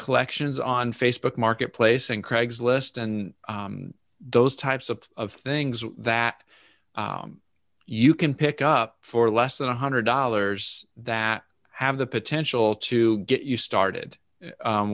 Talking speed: 135 wpm